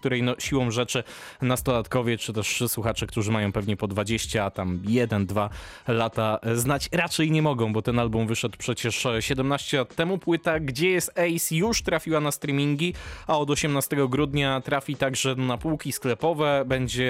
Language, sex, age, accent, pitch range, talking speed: Polish, male, 20-39, native, 120-150 Hz, 160 wpm